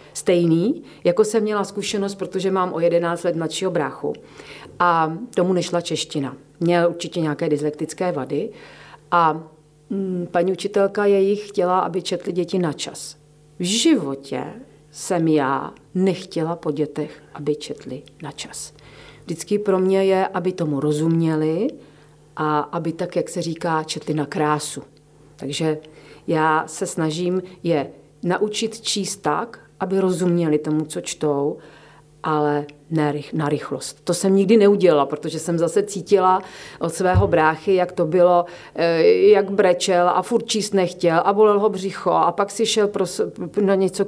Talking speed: 140 wpm